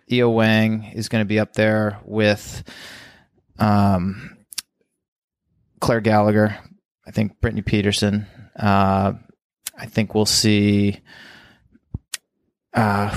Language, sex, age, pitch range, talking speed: English, male, 20-39, 100-110 Hz, 95 wpm